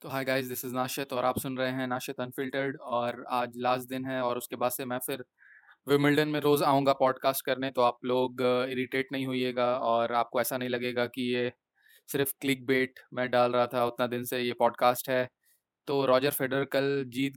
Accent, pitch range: native, 125-135 Hz